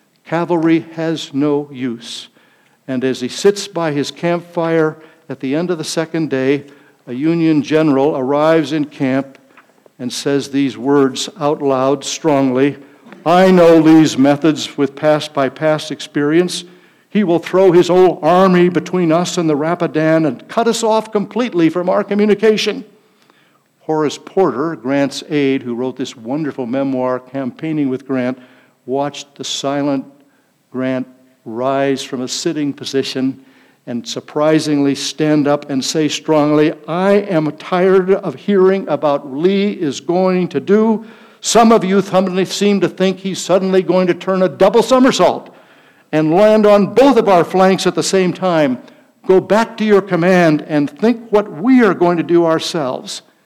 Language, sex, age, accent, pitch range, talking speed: English, male, 60-79, American, 140-190 Hz, 155 wpm